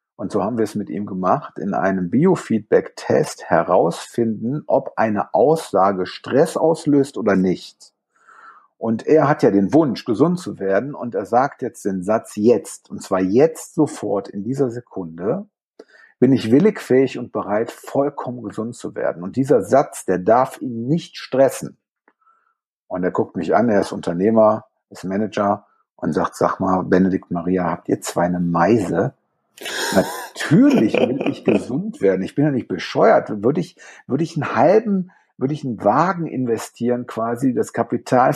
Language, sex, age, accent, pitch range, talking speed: German, male, 50-69, German, 100-145 Hz, 165 wpm